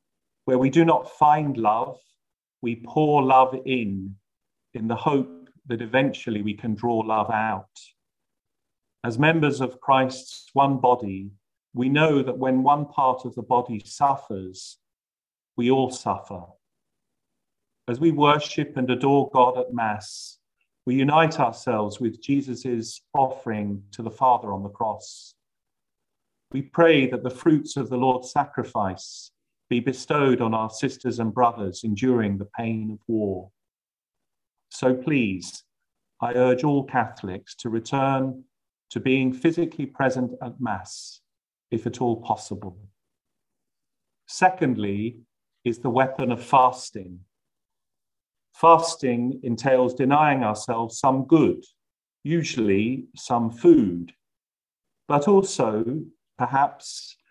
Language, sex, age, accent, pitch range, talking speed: English, male, 40-59, British, 110-135 Hz, 120 wpm